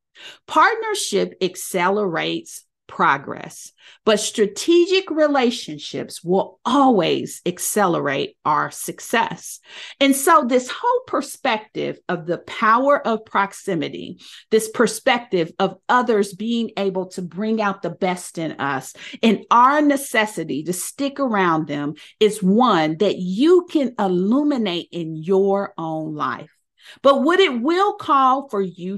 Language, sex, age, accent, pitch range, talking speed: English, female, 40-59, American, 185-265 Hz, 120 wpm